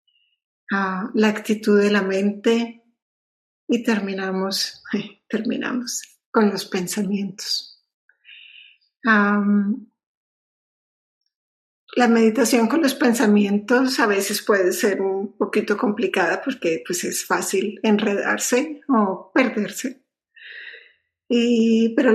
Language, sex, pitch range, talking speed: English, female, 205-245 Hz, 85 wpm